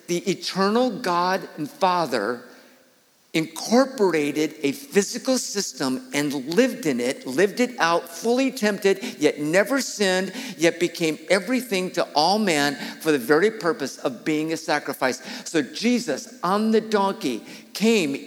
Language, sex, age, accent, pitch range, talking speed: English, male, 50-69, American, 160-240 Hz, 135 wpm